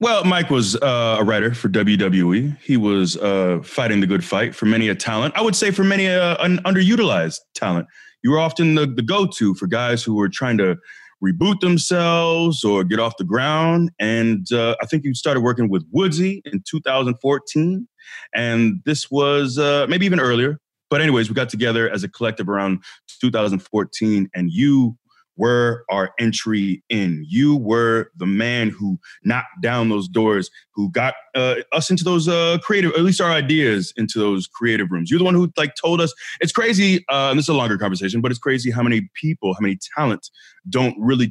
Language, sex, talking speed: English, male, 190 wpm